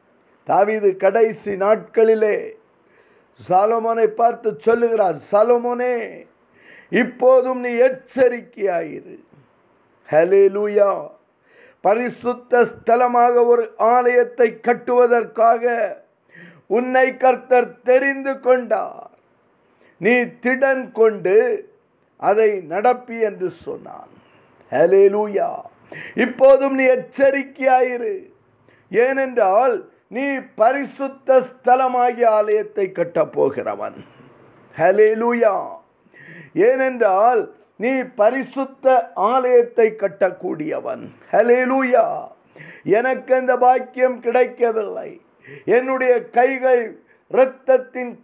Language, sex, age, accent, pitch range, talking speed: Tamil, male, 50-69, native, 230-270 Hz, 60 wpm